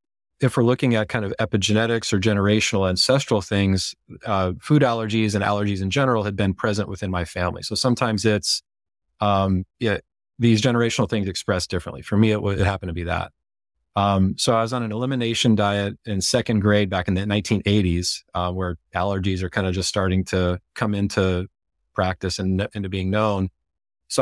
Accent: American